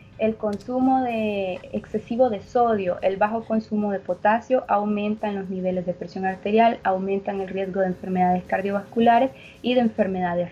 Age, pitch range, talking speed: 20-39, 190-215 Hz, 150 wpm